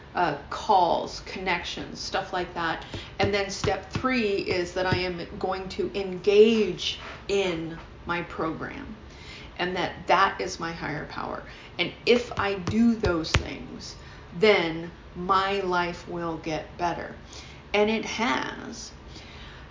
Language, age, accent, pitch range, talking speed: English, 40-59, American, 175-220 Hz, 130 wpm